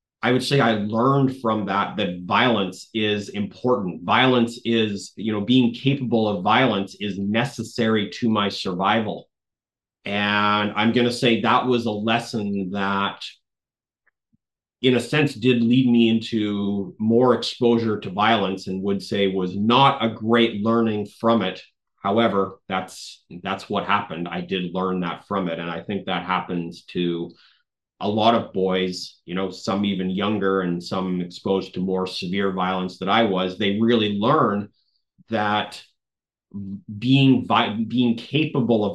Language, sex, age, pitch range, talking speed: English, male, 30-49, 95-115 Hz, 155 wpm